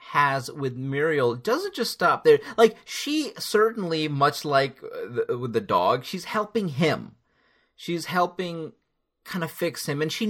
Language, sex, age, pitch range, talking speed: English, male, 30-49, 125-195 Hz, 155 wpm